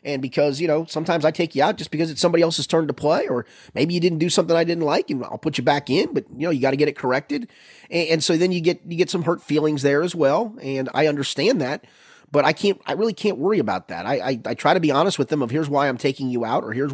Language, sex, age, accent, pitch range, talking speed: English, male, 30-49, American, 125-170 Hz, 305 wpm